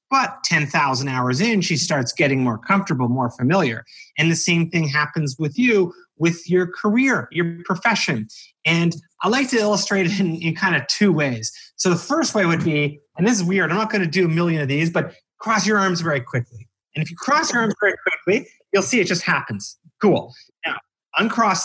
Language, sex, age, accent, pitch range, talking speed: English, male, 30-49, American, 150-205 Hz, 210 wpm